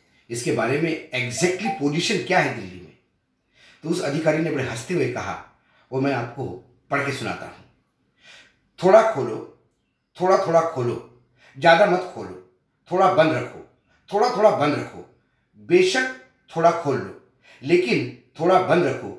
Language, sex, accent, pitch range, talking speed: Hindi, male, native, 125-180 Hz, 145 wpm